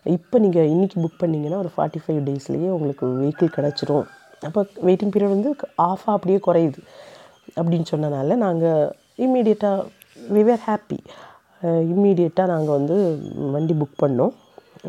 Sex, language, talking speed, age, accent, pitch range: female, Tamil, 130 wpm, 30-49, native, 150-185 Hz